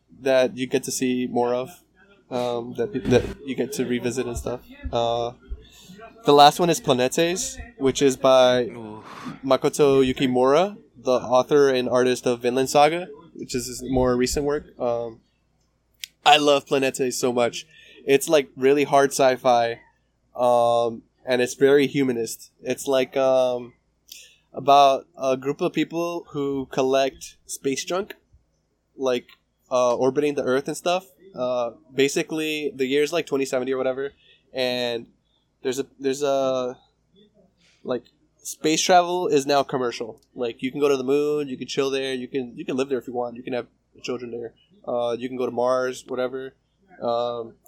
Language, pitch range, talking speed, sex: English, 125-145 Hz, 160 wpm, male